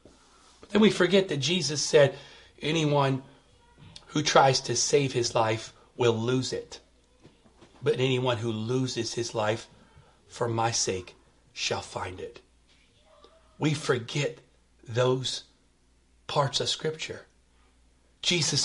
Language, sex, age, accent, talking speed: English, male, 40-59, American, 115 wpm